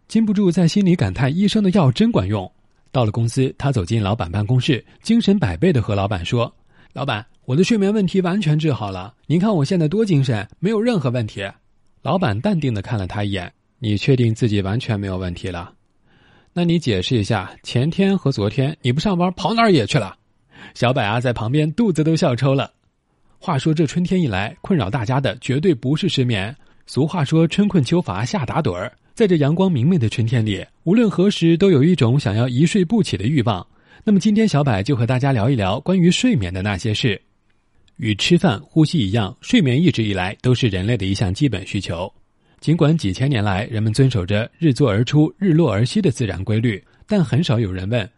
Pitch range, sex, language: 110-165 Hz, male, Chinese